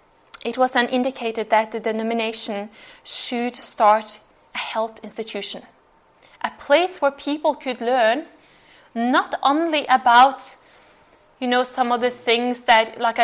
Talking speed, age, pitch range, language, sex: 130 wpm, 10-29, 225-270 Hz, English, female